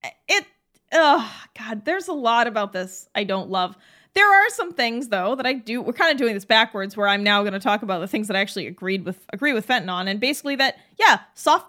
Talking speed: 245 wpm